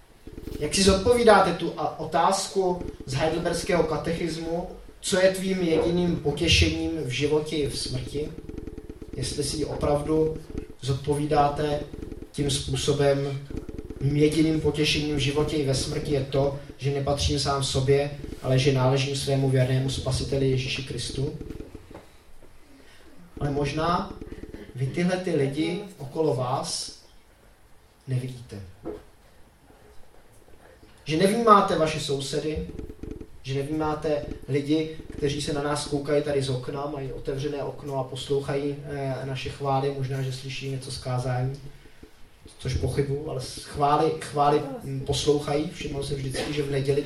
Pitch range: 135-155 Hz